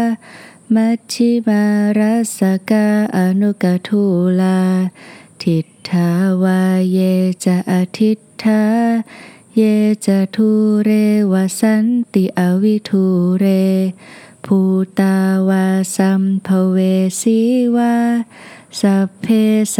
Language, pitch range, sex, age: Thai, 190-220 Hz, female, 20-39